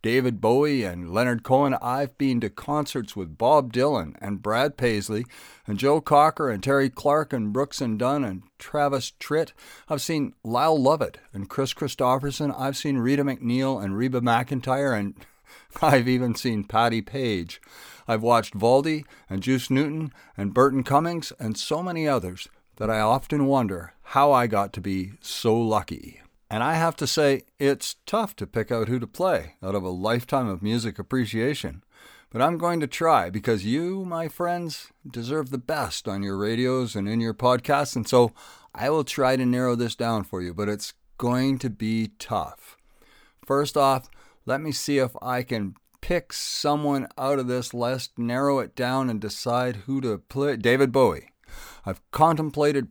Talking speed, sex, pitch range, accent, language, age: 175 wpm, male, 110-140 Hz, American, English, 50-69